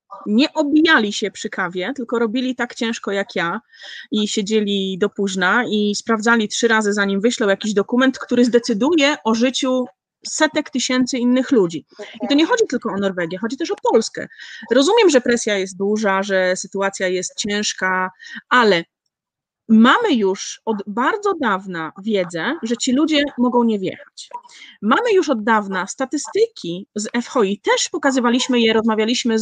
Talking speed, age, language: 155 wpm, 30-49, Polish